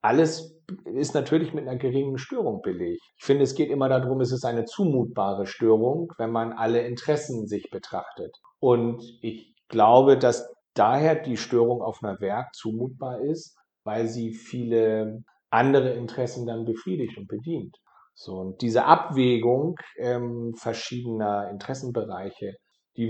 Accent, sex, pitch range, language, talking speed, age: German, male, 110-130 Hz, German, 140 wpm, 50-69